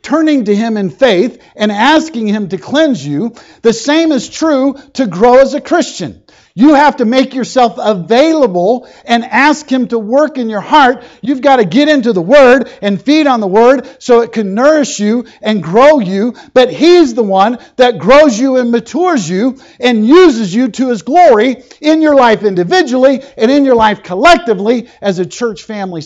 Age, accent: 50-69, American